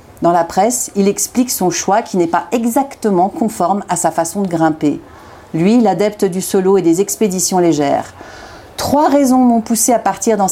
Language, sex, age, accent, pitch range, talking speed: French, female, 50-69, French, 180-235 Hz, 185 wpm